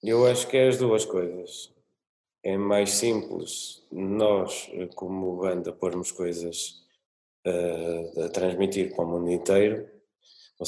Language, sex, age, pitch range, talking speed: Portuguese, male, 20-39, 90-100 Hz, 125 wpm